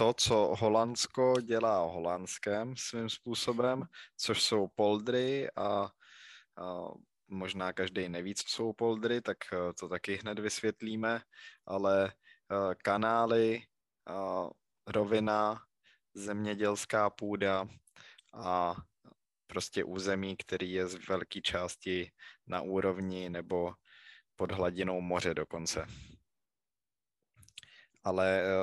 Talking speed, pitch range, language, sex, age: 90 wpm, 95-105 Hz, Czech, male, 20-39